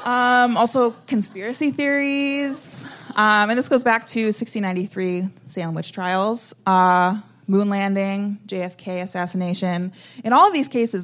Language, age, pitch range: English, 20-39, 175-225 Hz